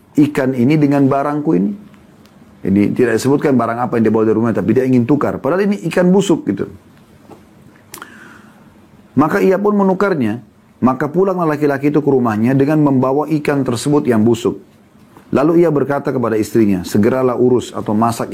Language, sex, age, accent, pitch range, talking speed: Indonesian, male, 30-49, native, 115-150 Hz, 160 wpm